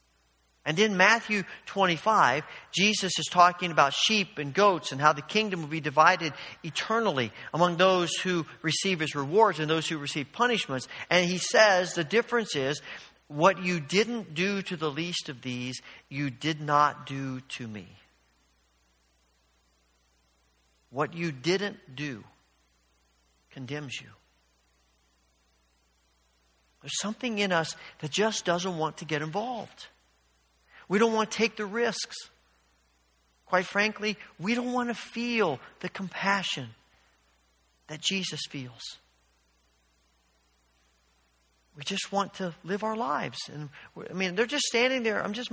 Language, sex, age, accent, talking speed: English, male, 50-69, American, 135 wpm